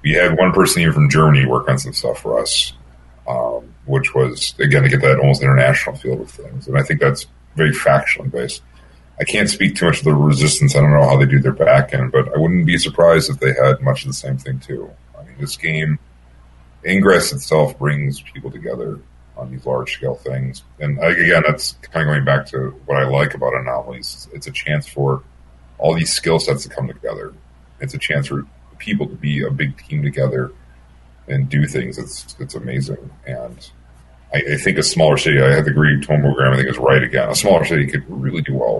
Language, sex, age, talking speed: English, male, 40-59, 225 wpm